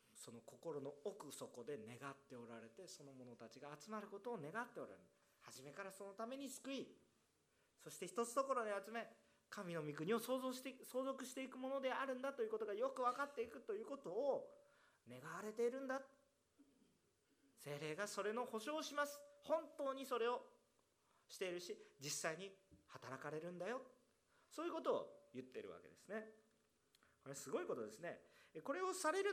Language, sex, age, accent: Japanese, male, 40-59, native